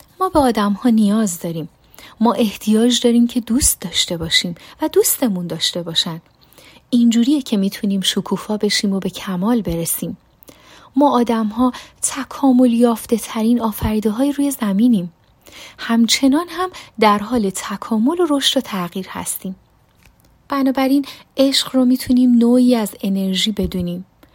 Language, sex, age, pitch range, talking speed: Persian, female, 30-49, 190-255 Hz, 135 wpm